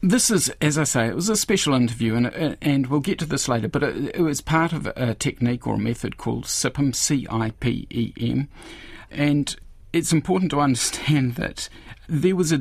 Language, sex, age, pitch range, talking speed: English, male, 50-69, 115-150 Hz, 190 wpm